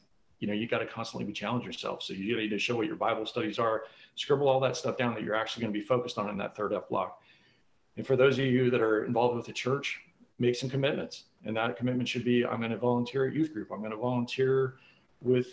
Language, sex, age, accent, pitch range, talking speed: English, male, 40-59, American, 115-130 Hz, 265 wpm